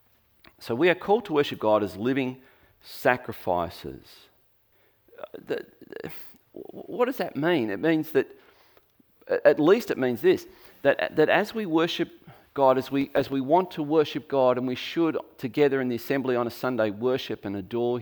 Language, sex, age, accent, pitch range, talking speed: English, male, 40-59, Australian, 110-155 Hz, 160 wpm